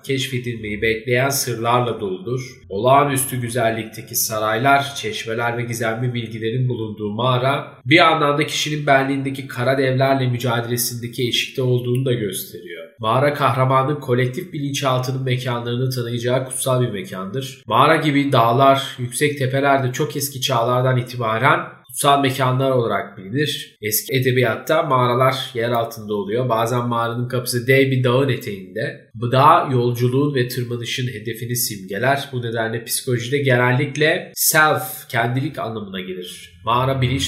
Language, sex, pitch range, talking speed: Turkish, male, 120-135 Hz, 120 wpm